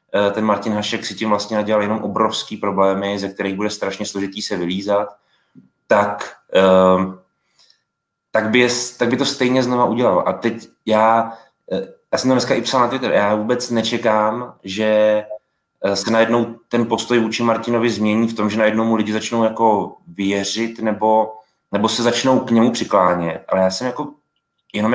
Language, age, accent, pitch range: Czech, 20-39, native, 105-125 Hz